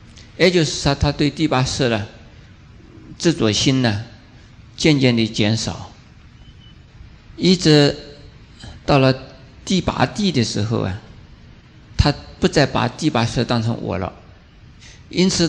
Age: 50-69